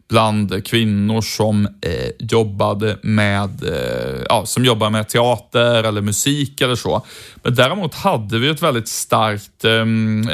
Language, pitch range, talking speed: Swedish, 110-125 Hz, 135 wpm